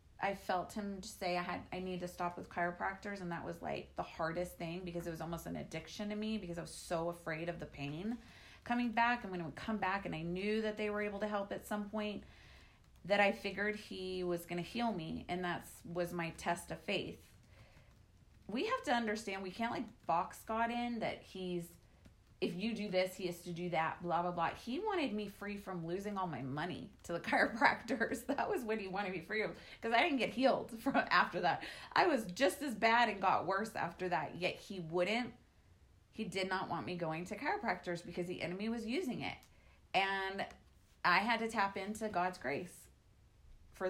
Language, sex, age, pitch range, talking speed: English, female, 30-49, 175-215 Hz, 215 wpm